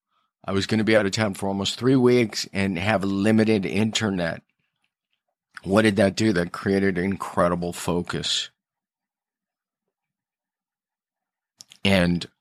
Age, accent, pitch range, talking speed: 50-69, American, 90-110 Hz, 120 wpm